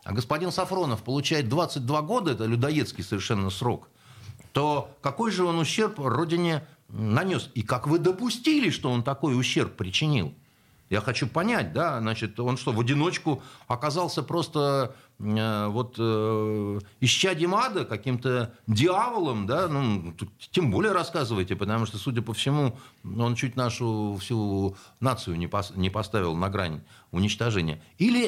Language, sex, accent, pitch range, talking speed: Russian, male, native, 115-160 Hz, 130 wpm